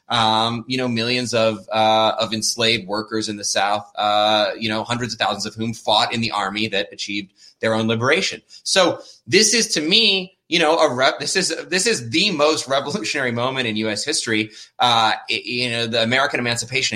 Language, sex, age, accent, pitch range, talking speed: English, male, 20-39, American, 115-145 Hz, 195 wpm